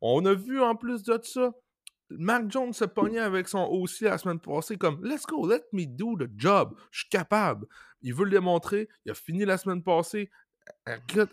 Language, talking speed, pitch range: French, 210 wpm, 130-185 Hz